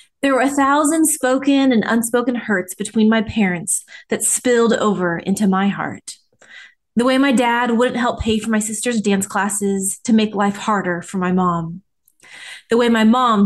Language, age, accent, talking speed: English, 20-39, American, 180 wpm